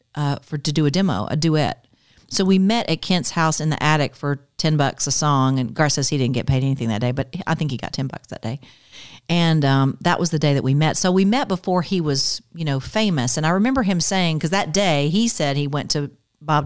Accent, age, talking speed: American, 40-59, 265 wpm